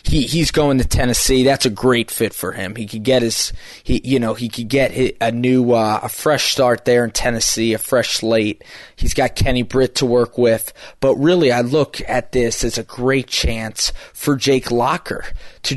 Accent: American